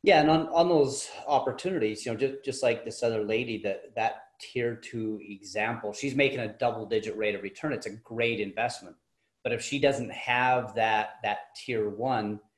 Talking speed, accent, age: 190 wpm, American, 30-49